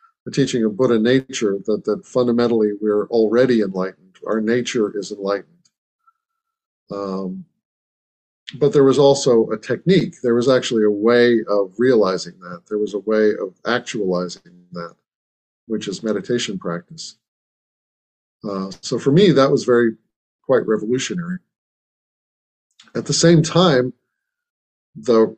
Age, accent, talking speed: 50-69, American, 130 wpm